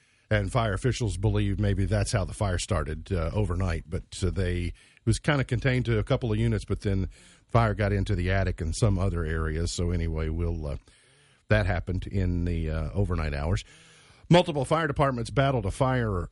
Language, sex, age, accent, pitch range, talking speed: English, male, 50-69, American, 100-135 Hz, 195 wpm